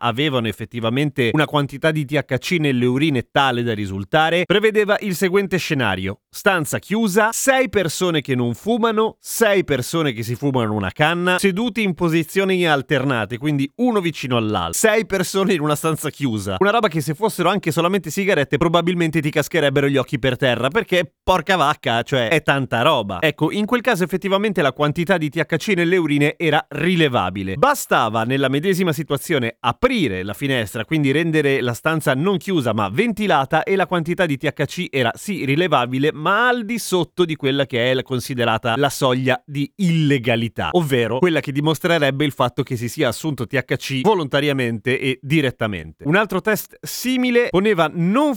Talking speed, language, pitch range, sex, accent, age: 165 wpm, Italian, 130-185 Hz, male, native, 30-49